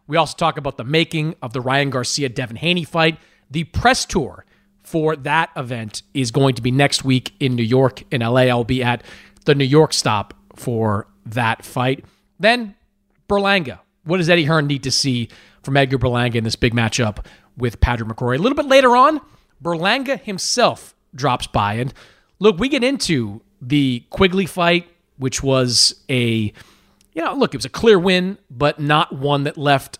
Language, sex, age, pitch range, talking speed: English, male, 30-49, 125-165 Hz, 180 wpm